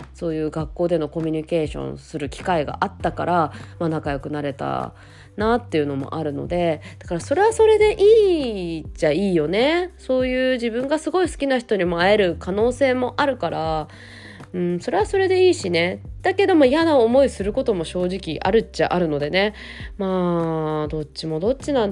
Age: 20-39